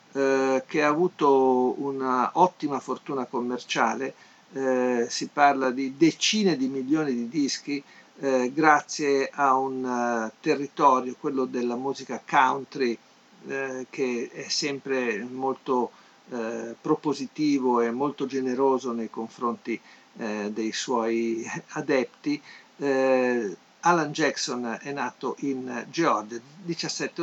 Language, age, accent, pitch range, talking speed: Italian, 50-69, native, 125-160 Hz, 110 wpm